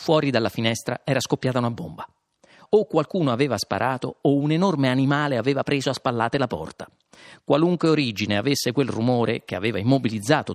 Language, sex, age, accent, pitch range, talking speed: Italian, male, 40-59, native, 110-170 Hz, 165 wpm